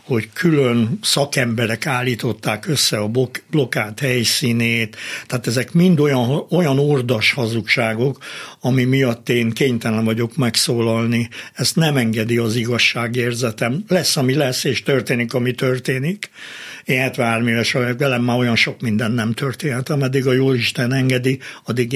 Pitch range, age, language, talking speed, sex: 120-140 Hz, 60-79, Hungarian, 135 wpm, male